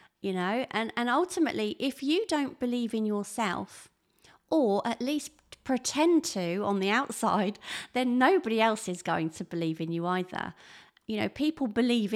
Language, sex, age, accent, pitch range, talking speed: English, female, 30-49, British, 195-270 Hz, 165 wpm